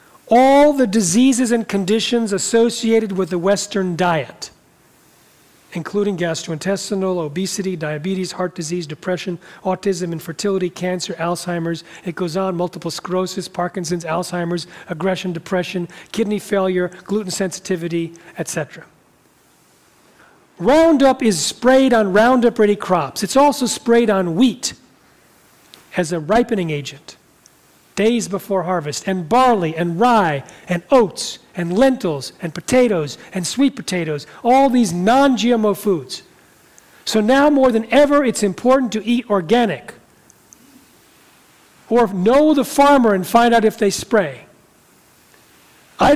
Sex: male